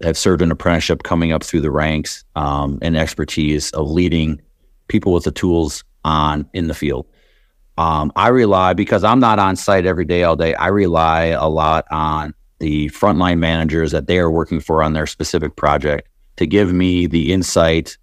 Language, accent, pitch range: English, American, 80-95 Hz